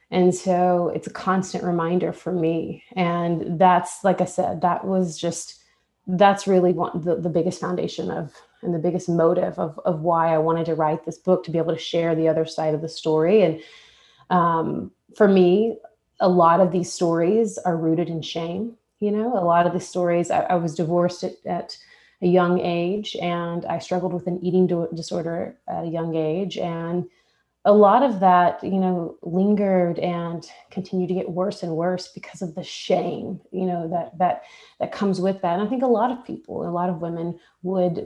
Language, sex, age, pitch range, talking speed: English, female, 30-49, 170-190 Hz, 200 wpm